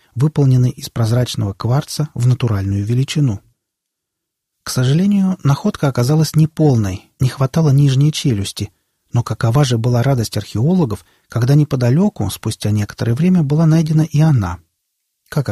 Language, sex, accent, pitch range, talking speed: Russian, male, native, 115-150 Hz, 125 wpm